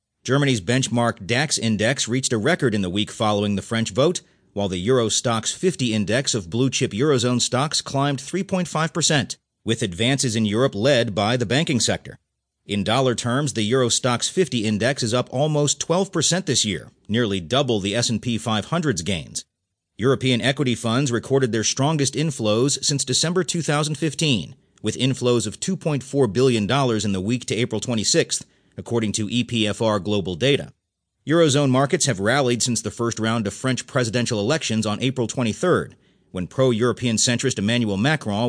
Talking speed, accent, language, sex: 160 wpm, American, English, male